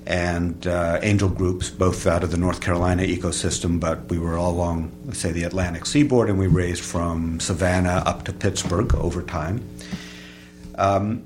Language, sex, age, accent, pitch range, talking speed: English, male, 50-69, American, 90-115 Hz, 170 wpm